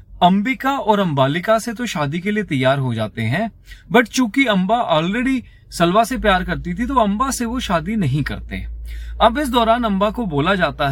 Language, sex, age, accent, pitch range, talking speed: Hindi, male, 30-49, native, 130-210 Hz, 190 wpm